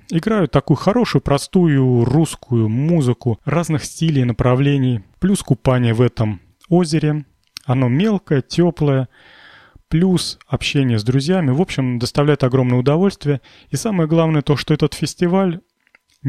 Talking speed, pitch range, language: 125 wpm, 120-160 Hz, Russian